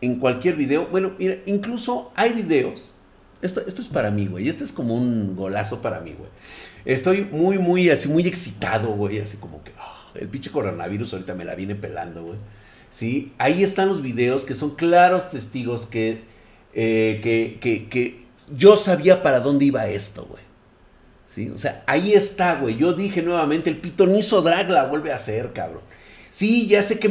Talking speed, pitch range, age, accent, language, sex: 190 wpm, 115-185 Hz, 40-59, Mexican, Spanish, male